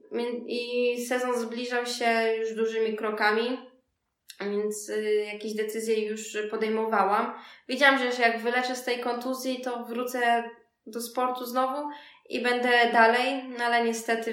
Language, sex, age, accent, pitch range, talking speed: Polish, female, 20-39, native, 215-245 Hz, 120 wpm